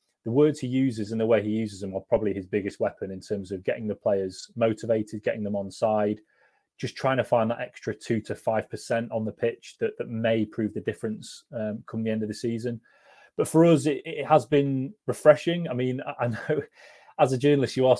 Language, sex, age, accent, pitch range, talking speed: English, male, 30-49, British, 105-130 Hz, 230 wpm